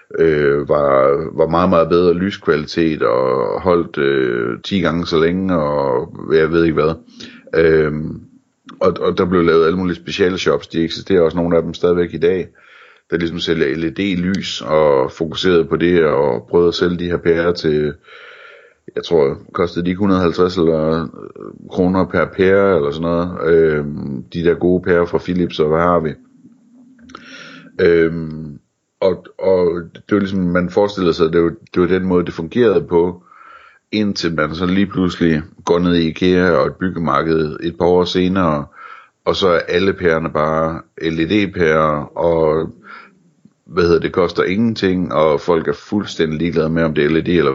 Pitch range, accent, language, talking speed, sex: 80-95 Hz, native, Danish, 170 wpm, male